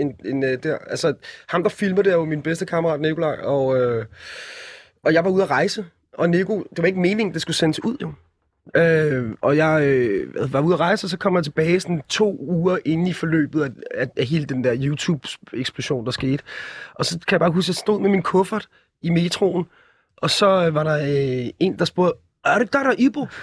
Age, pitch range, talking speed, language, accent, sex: 30-49, 150-195 Hz, 220 wpm, Danish, native, male